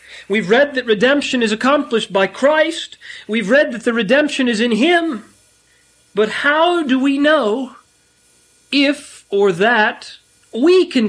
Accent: American